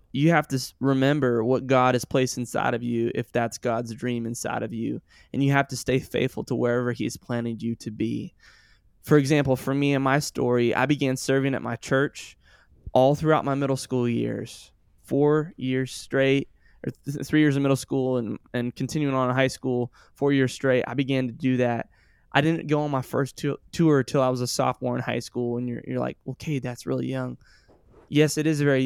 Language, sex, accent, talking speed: English, male, American, 215 wpm